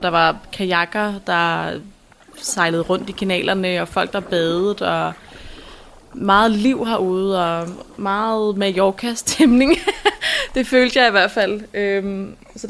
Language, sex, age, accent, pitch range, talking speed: Danish, female, 20-39, native, 190-255 Hz, 130 wpm